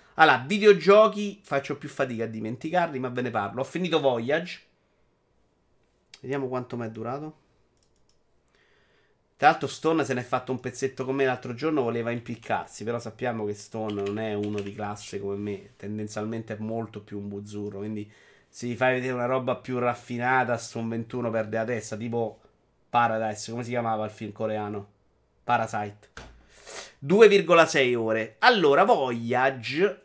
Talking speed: 155 wpm